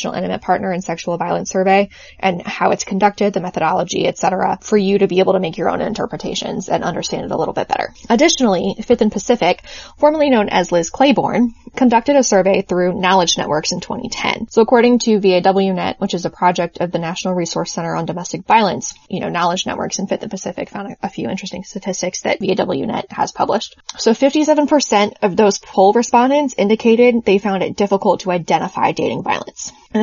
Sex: female